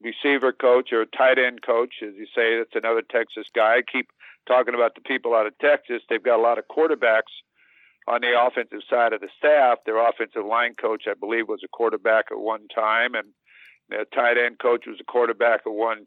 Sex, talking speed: male, 215 wpm